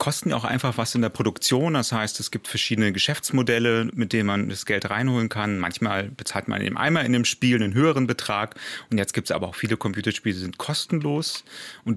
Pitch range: 100-120 Hz